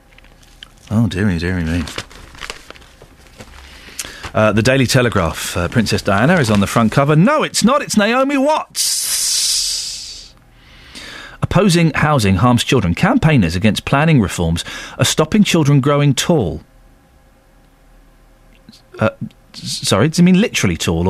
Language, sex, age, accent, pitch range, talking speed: English, male, 40-59, British, 105-165 Hz, 125 wpm